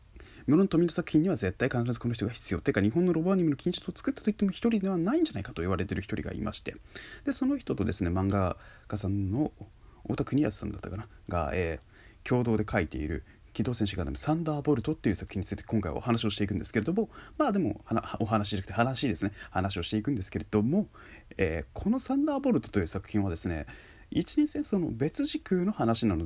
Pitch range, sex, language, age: 100-145 Hz, male, Japanese, 30-49